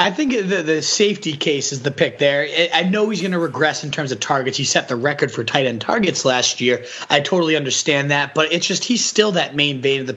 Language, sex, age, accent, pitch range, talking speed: English, male, 30-49, American, 130-160 Hz, 260 wpm